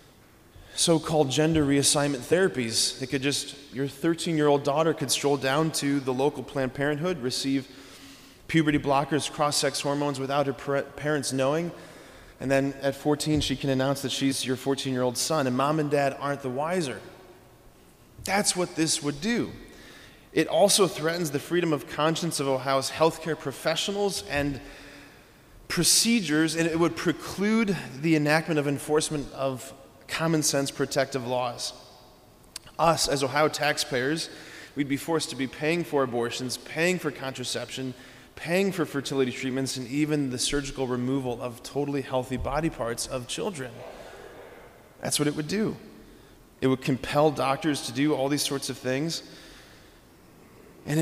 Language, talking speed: English, 145 wpm